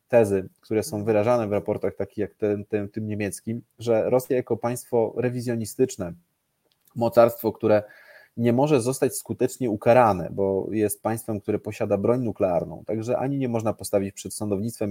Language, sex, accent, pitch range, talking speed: Polish, male, native, 105-120 Hz, 145 wpm